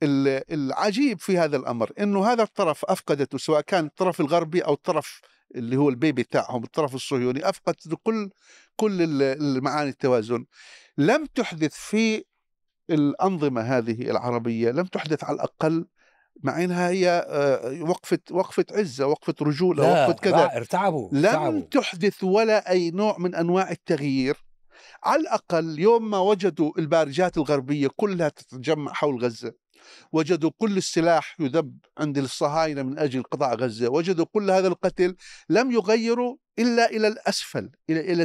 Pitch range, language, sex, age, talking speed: 140-185 Hz, Arabic, male, 50-69, 135 wpm